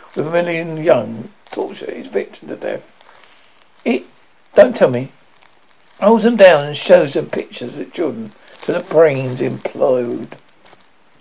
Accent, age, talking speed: British, 60-79, 135 wpm